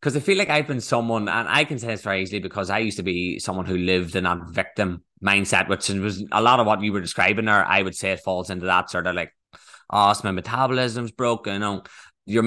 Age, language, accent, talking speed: 20-39, English, Irish, 245 wpm